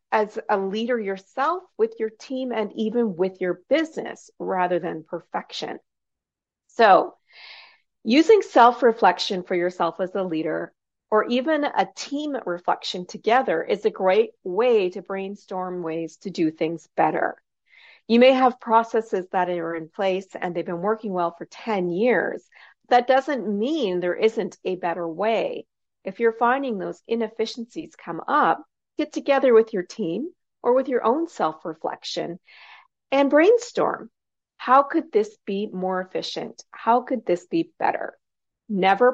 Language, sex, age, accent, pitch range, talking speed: English, female, 40-59, American, 185-260 Hz, 145 wpm